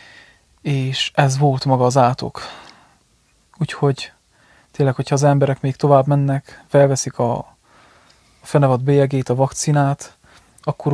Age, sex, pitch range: 20-39, male, 135-145 Hz